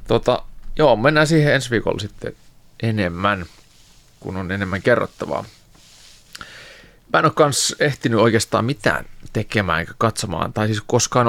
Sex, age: male, 30-49